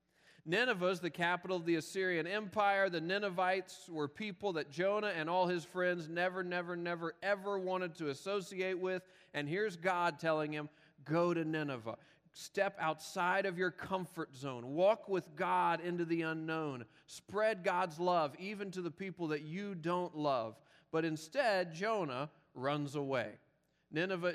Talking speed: 155 wpm